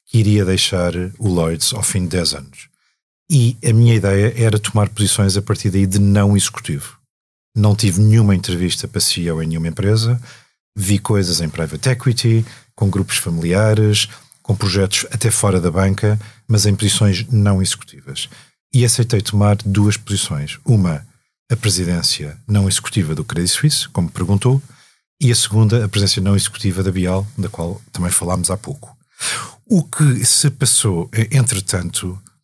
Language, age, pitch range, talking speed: Portuguese, 40-59, 90-115 Hz, 160 wpm